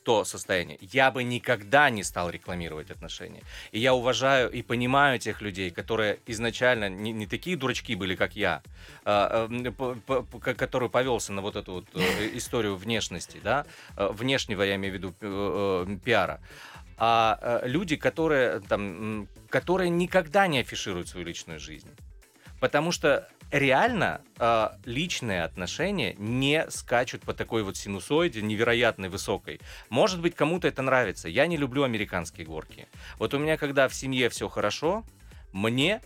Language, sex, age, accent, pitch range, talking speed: Russian, male, 30-49, native, 100-135 Hz, 145 wpm